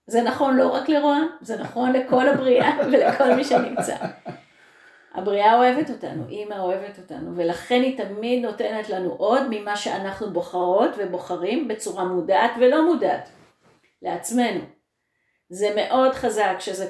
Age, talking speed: 30-49, 130 wpm